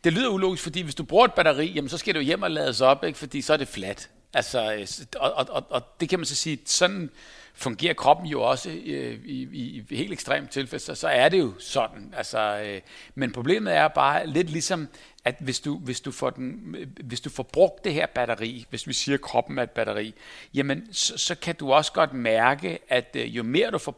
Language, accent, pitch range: Danish, native, 130-175 Hz